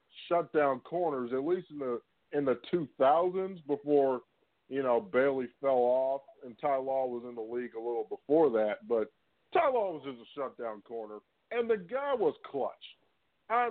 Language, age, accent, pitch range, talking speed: English, 50-69, American, 140-185 Hz, 175 wpm